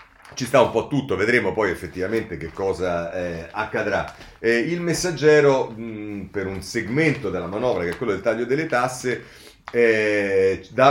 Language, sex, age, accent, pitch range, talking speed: Italian, male, 40-59, native, 95-130 Hz, 160 wpm